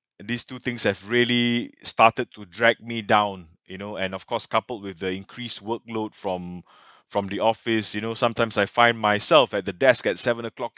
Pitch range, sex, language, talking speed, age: 105-130 Hz, male, English, 200 wpm, 20-39